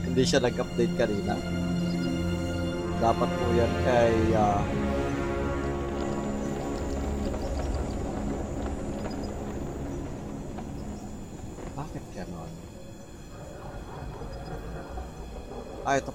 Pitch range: 80-120 Hz